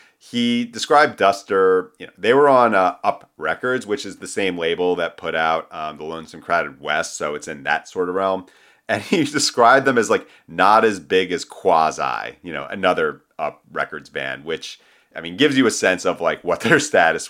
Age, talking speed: 30-49, 210 wpm